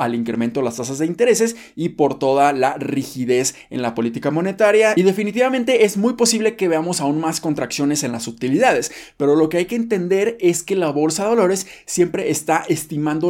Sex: male